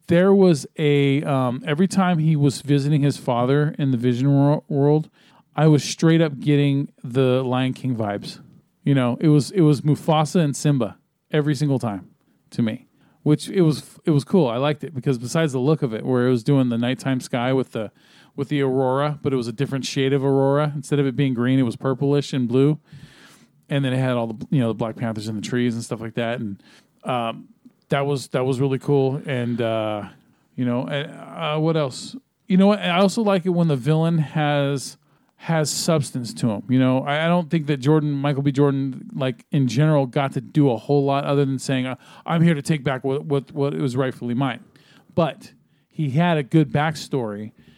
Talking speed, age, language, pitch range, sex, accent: 215 wpm, 40-59, English, 130-150 Hz, male, American